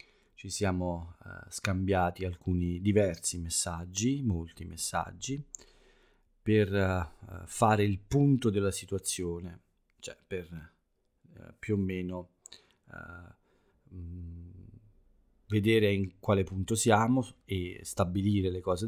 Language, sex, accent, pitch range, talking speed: Italian, male, native, 90-105 Hz, 90 wpm